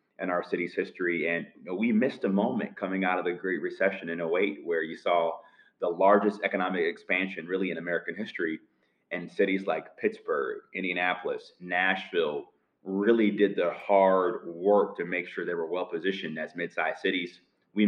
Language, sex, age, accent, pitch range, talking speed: English, male, 30-49, American, 90-105 Hz, 165 wpm